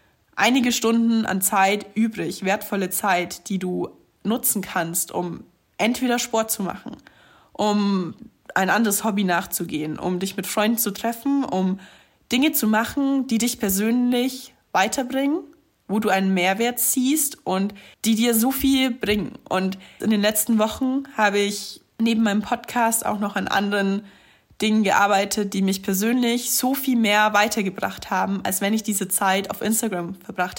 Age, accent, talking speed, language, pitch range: 20-39, German, 155 wpm, German, 195-235 Hz